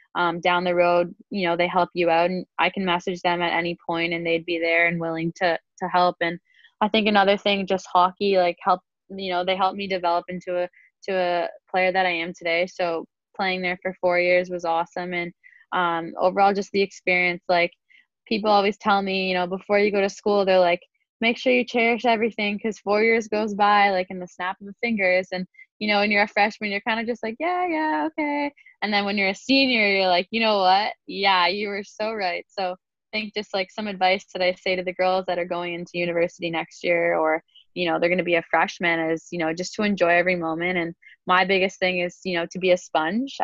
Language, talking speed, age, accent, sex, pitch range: English, 240 wpm, 10-29, American, female, 170-200 Hz